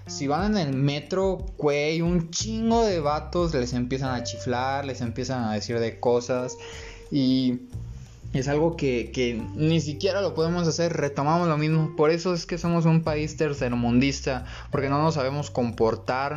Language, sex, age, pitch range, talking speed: Spanish, male, 20-39, 120-150 Hz, 165 wpm